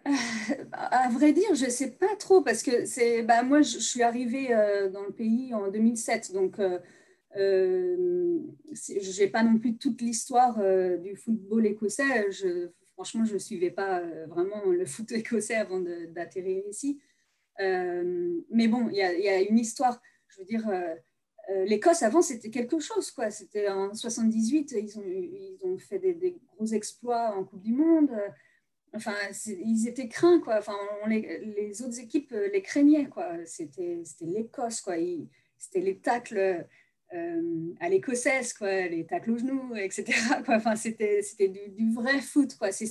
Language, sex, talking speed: French, female, 175 wpm